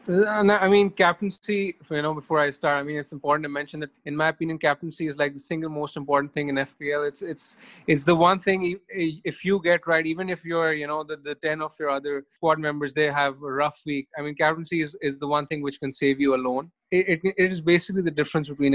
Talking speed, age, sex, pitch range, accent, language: 245 wpm, 20-39, male, 140-170 Hz, Indian, English